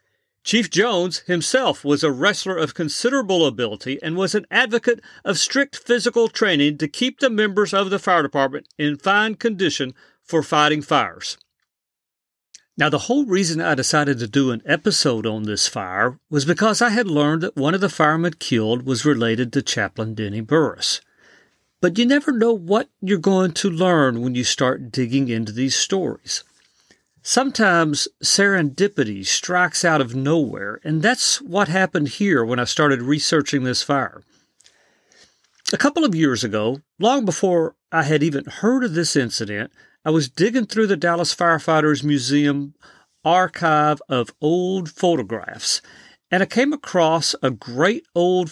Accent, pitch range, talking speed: American, 140-195 Hz, 155 wpm